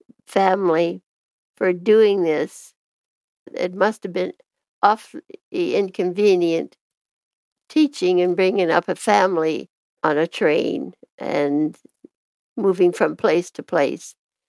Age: 60-79